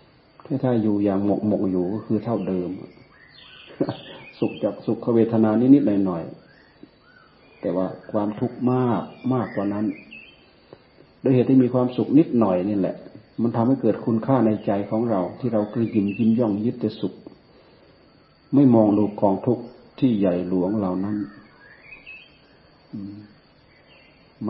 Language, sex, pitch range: Thai, male, 100-115 Hz